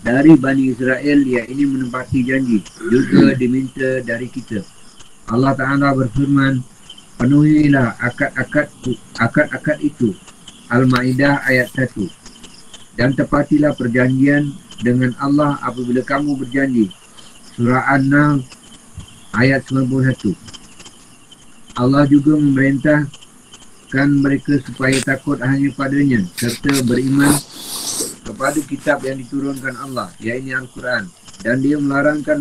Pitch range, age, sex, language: 125-140 Hz, 50-69, male, Malay